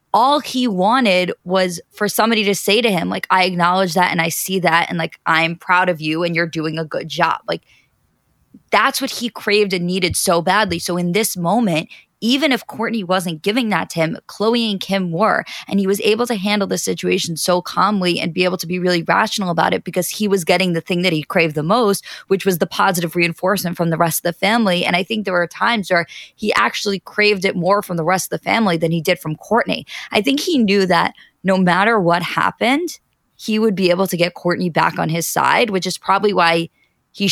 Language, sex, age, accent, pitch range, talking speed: English, female, 20-39, American, 165-205 Hz, 230 wpm